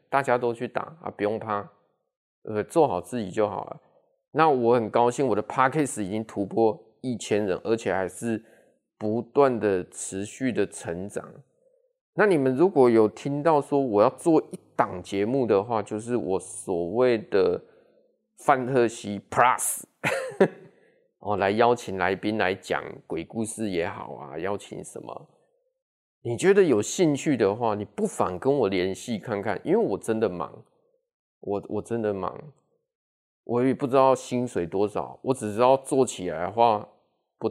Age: 20-39